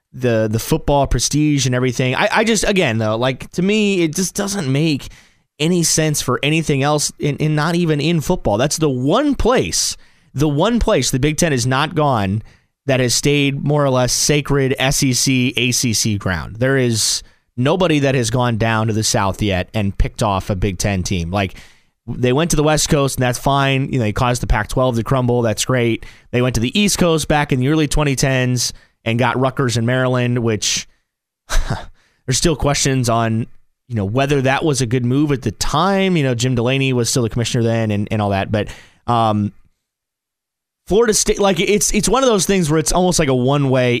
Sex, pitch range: male, 120-155 Hz